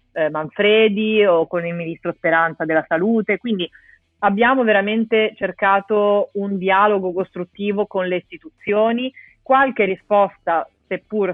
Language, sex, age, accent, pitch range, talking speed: Italian, female, 30-49, native, 170-215 Hz, 110 wpm